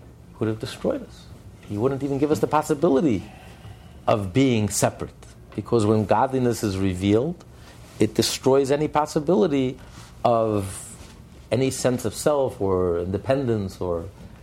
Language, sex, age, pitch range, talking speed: English, male, 50-69, 105-140 Hz, 125 wpm